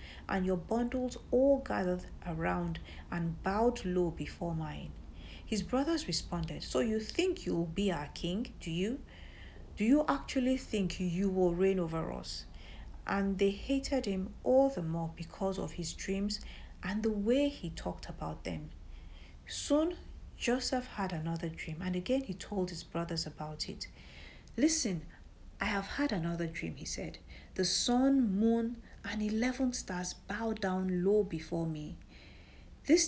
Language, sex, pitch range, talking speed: English, female, 165-220 Hz, 150 wpm